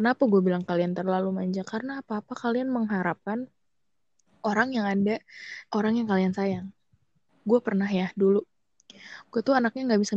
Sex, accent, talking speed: female, native, 155 wpm